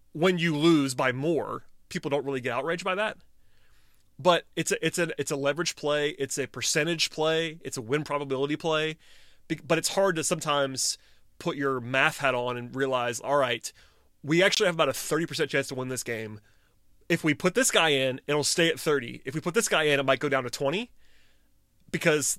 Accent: American